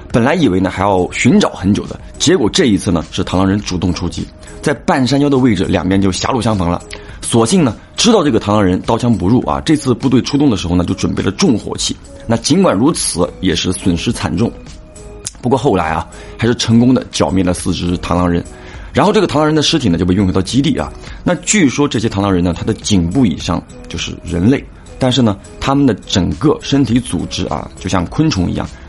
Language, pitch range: Chinese, 90-125 Hz